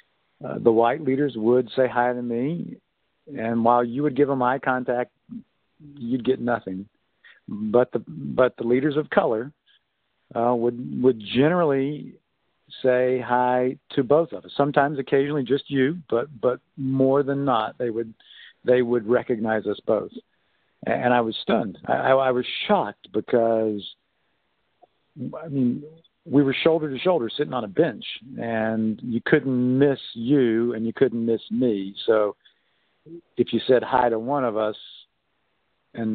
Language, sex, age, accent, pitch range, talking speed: English, male, 50-69, American, 110-130 Hz, 155 wpm